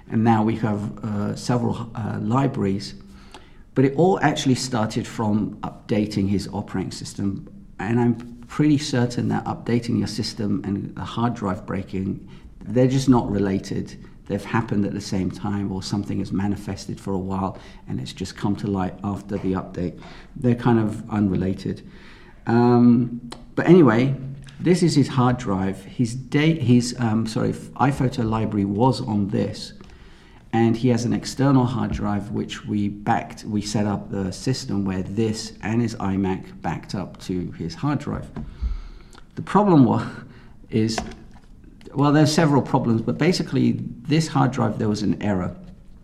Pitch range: 100-120 Hz